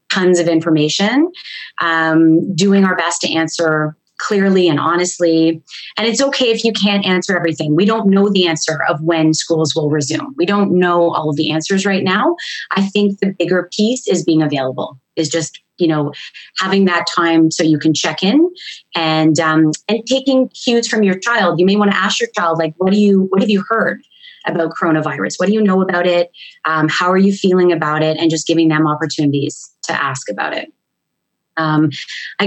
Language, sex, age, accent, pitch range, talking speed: English, female, 20-39, American, 160-200 Hz, 200 wpm